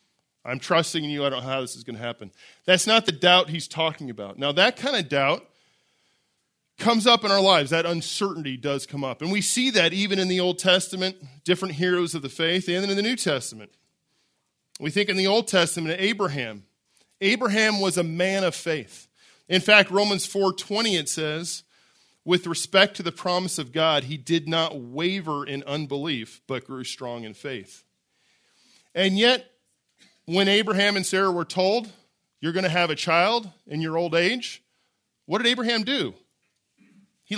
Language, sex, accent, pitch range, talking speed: English, male, American, 145-195 Hz, 185 wpm